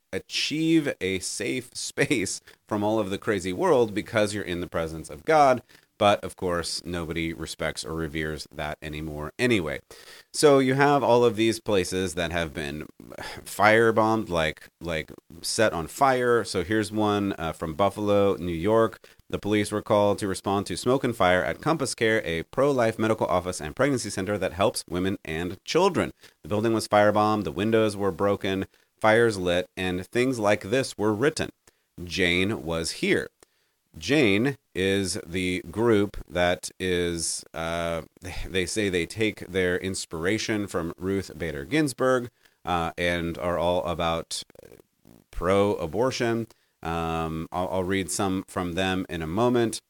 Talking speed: 155 wpm